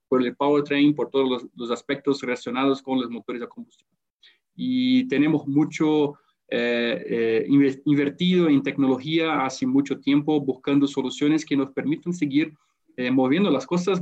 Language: Spanish